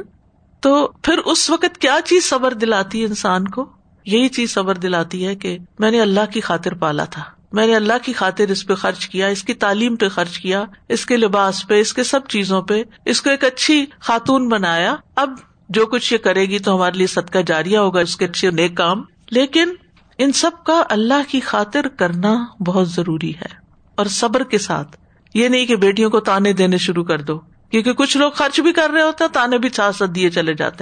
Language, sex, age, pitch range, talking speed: Urdu, female, 50-69, 185-250 Hz, 215 wpm